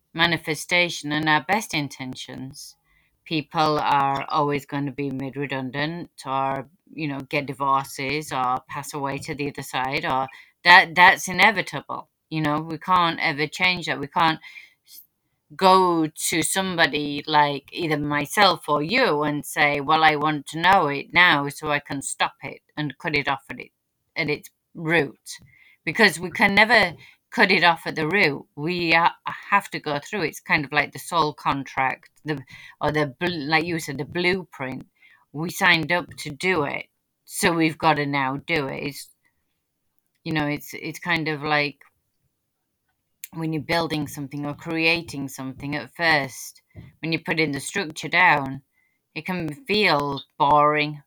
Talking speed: 165 wpm